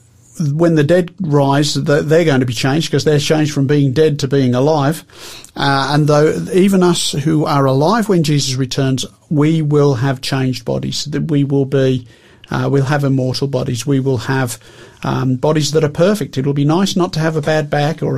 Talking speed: 200 wpm